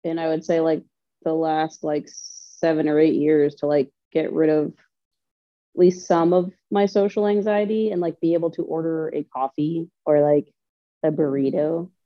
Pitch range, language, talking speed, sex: 145-170 Hz, English, 180 wpm, female